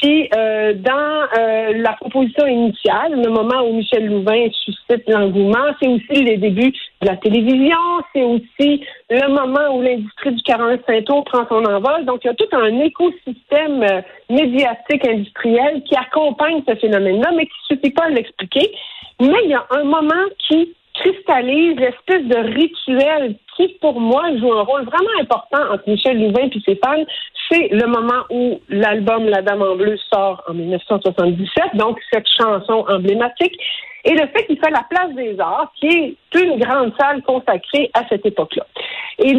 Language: French